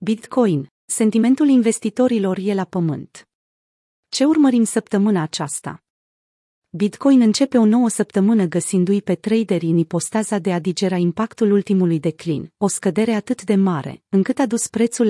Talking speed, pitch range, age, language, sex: 140 wpm, 175-225 Hz, 30-49, Romanian, female